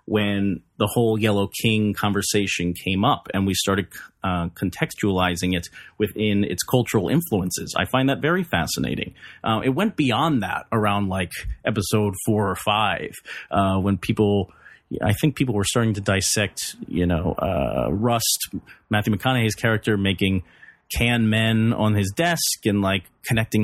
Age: 30-49